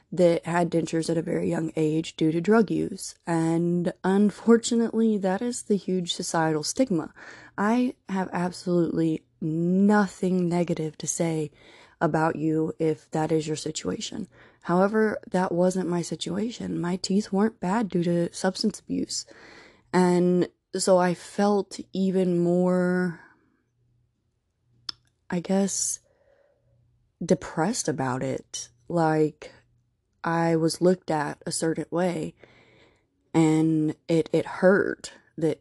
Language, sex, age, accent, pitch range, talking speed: English, female, 20-39, American, 155-185 Hz, 120 wpm